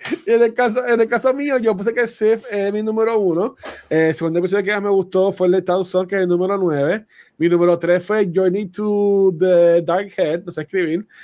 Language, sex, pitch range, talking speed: Spanish, male, 170-215 Hz, 230 wpm